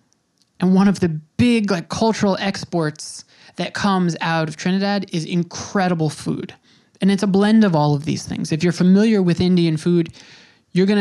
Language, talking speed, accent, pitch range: English, 180 wpm, American, 155-190 Hz